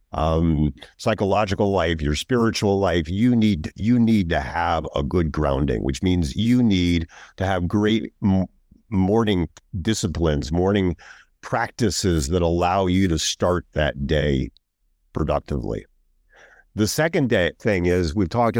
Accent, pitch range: American, 85-110 Hz